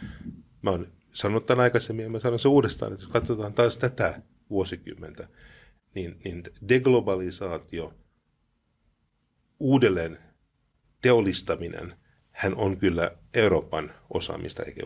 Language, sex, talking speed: Finnish, male, 105 wpm